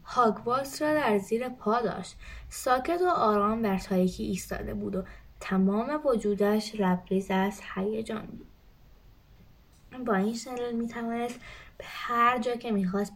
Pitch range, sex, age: 195-235 Hz, female, 20-39